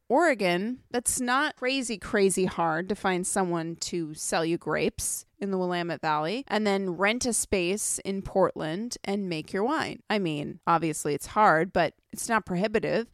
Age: 20-39